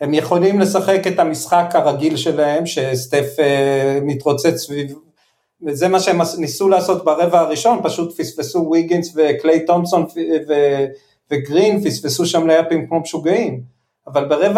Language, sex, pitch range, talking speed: Hebrew, male, 140-185 Hz, 130 wpm